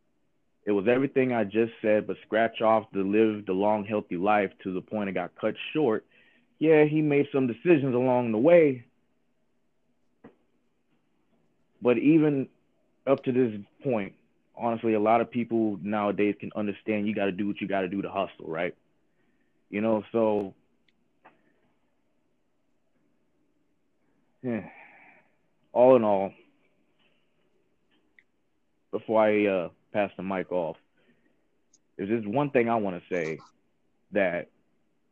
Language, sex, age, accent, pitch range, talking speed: English, male, 20-39, American, 95-115 Hz, 135 wpm